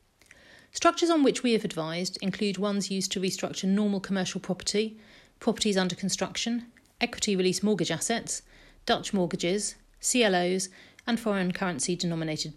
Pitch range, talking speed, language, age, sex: 170-215 Hz, 135 wpm, English, 40-59, female